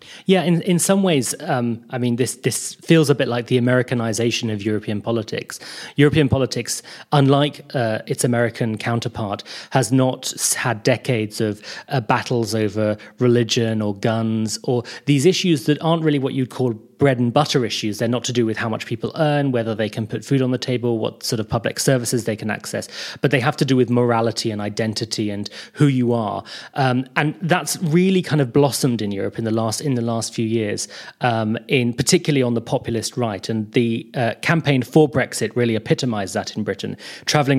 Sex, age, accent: male, 30-49, British